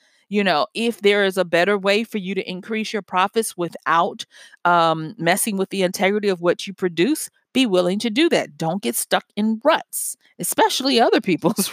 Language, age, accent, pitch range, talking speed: English, 40-59, American, 185-235 Hz, 190 wpm